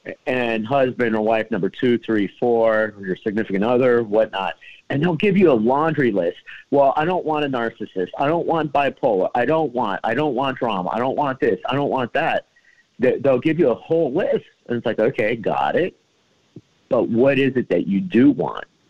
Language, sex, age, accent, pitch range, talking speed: English, male, 50-69, American, 110-140 Hz, 205 wpm